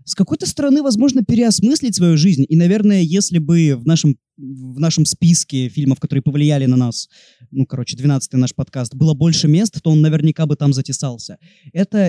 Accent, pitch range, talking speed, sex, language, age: native, 145-195 Hz, 175 wpm, male, Russian, 20-39